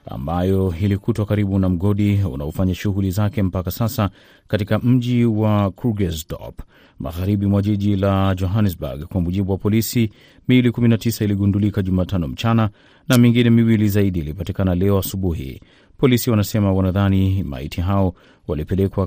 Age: 30-49